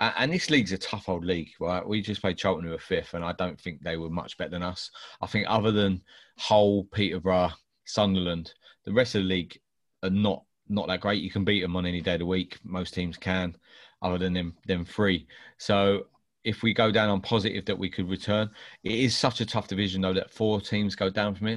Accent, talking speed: British, 235 wpm